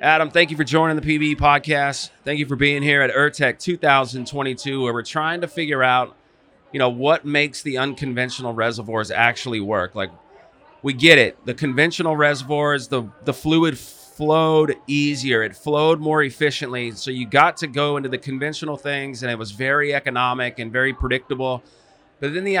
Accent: American